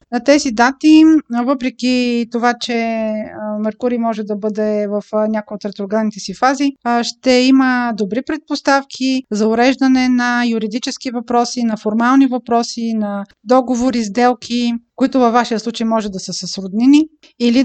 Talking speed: 135 wpm